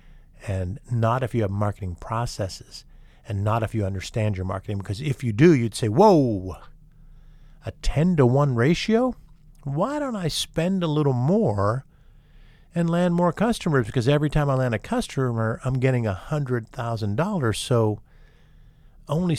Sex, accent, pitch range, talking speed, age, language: male, American, 110-150 Hz, 150 wpm, 50-69, English